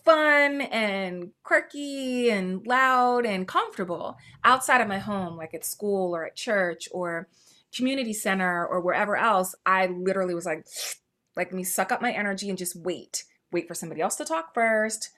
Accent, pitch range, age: American, 180-225 Hz, 20-39